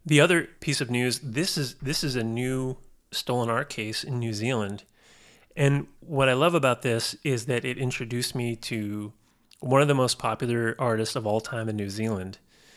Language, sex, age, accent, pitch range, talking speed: English, male, 30-49, American, 110-140 Hz, 195 wpm